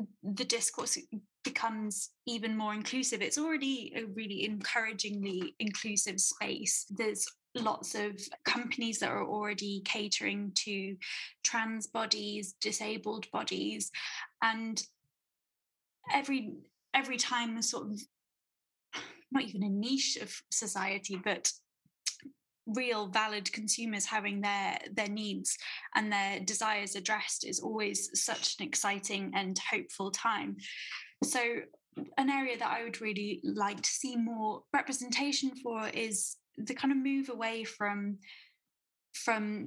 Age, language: 10-29, English